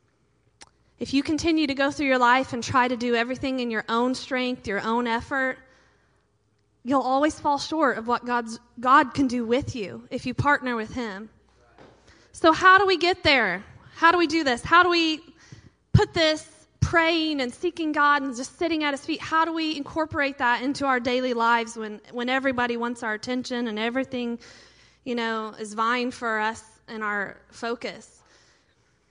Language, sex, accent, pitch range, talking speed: English, female, American, 230-290 Hz, 180 wpm